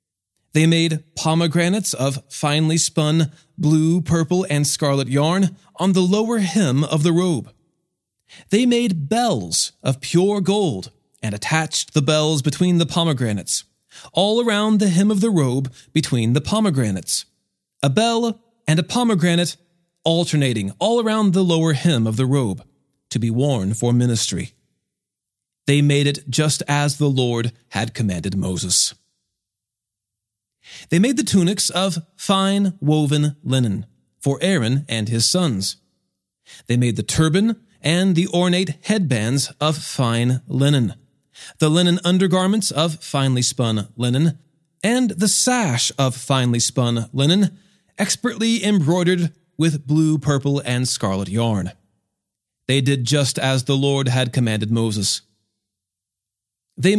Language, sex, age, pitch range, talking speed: English, male, 30-49, 120-180 Hz, 135 wpm